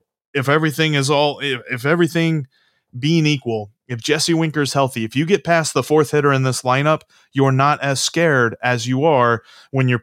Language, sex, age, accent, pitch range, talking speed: English, male, 30-49, American, 125-170 Hz, 195 wpm